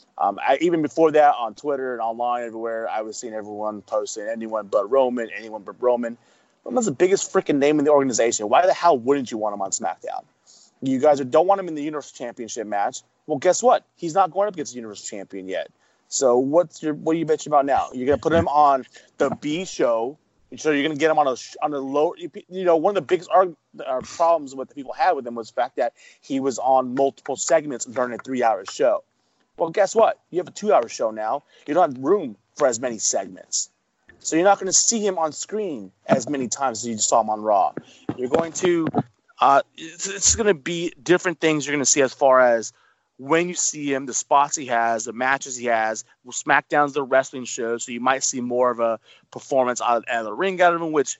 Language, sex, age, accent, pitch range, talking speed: English, male, 30-49, American, 120-165 Hz, 235 wpm